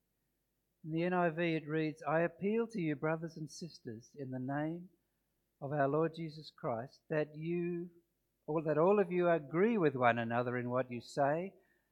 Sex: male